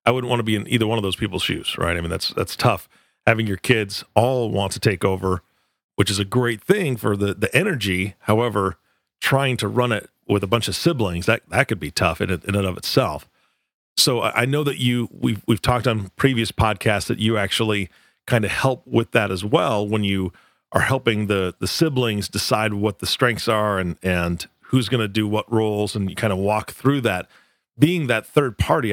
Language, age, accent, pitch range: English, 40-59, American, 95-120 Hz